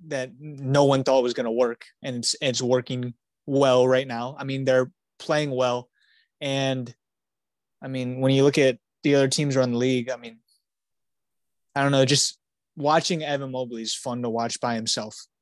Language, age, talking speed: English, 20-39, 185 wpm